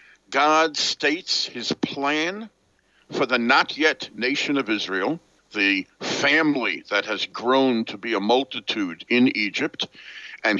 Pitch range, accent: 110-145 Hz, American